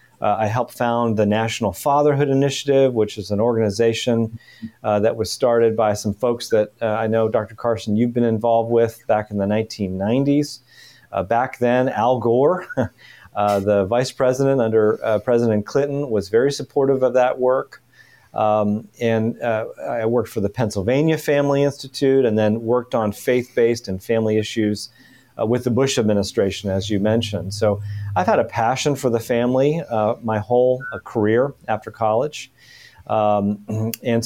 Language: English